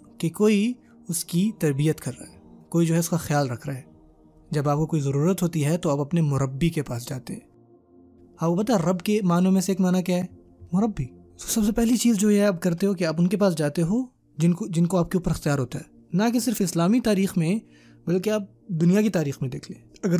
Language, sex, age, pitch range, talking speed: Urdu, male, 20-39, 140-185 Hz, 255 wpm